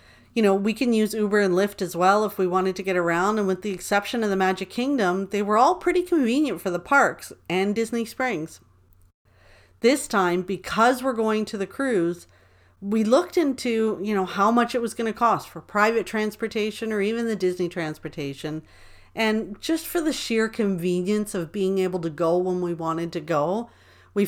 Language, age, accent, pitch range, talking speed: English, 40-59, American, 180-235 Hz, 200 wpm